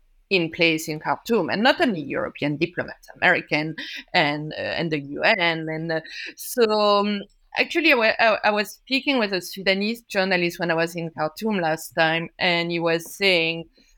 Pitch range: 170-225 Hz